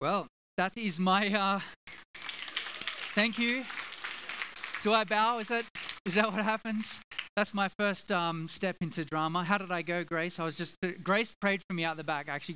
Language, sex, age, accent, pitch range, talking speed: English, male, 20-39, Australian, 175-215 Hz, 185 wpm